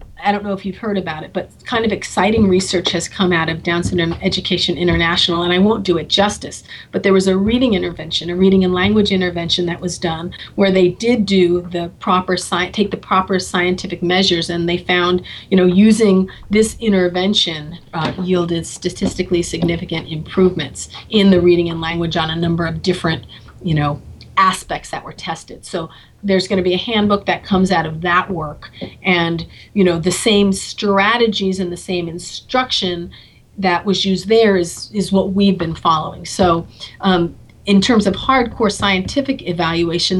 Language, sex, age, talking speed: English, female, 40-59, 185 wpm